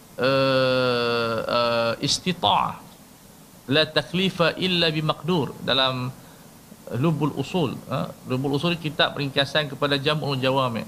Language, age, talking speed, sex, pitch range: Malay, 50-69, 115 wpm, male, 135-185 Hz